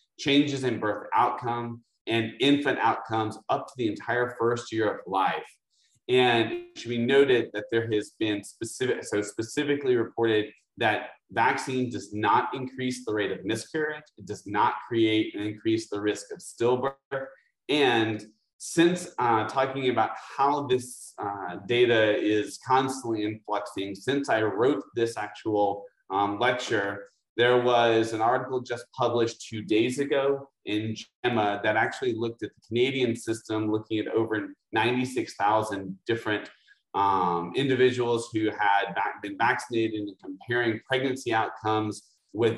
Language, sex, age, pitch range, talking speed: English, male, 30-49, 105-125 Hz, 140 wpm